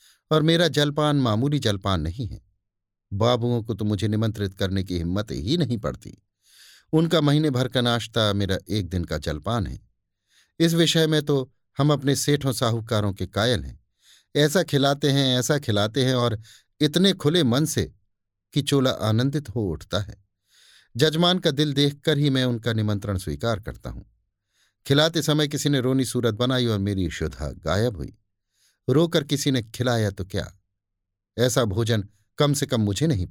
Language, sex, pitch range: Hindi, male, 100-140 Hz